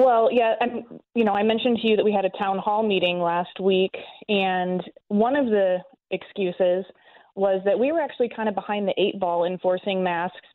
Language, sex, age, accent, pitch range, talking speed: English, female, 20-39, American, 185-225 Hz, 200 wpm